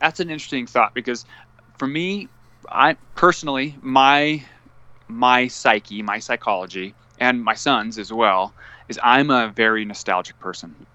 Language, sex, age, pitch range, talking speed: English, male, 20-39, 100-125 Hz, 135 wpm